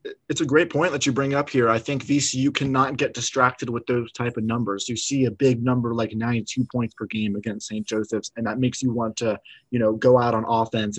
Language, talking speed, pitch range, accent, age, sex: English, 245 wpm, 120-140 Hz, American, 20-39, male